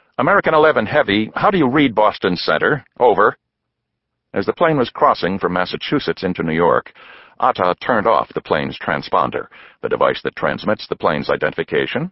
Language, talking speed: English, 165 wpm